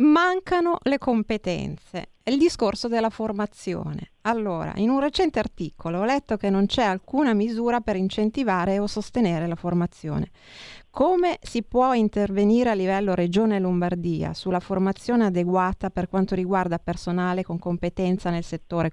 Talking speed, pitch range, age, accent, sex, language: 140 wpm, 170-205 Hz, 30-49, native, female, Italian